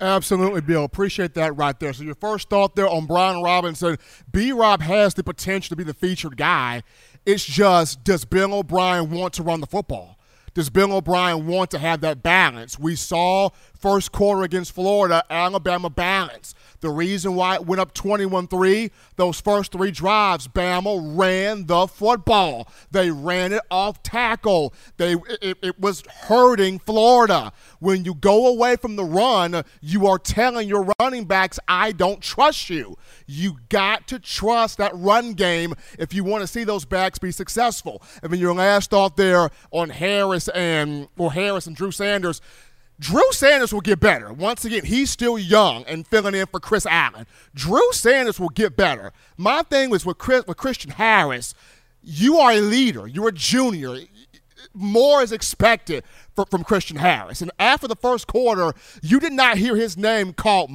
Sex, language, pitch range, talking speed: male, English, 175-215 Hz, 175 wpm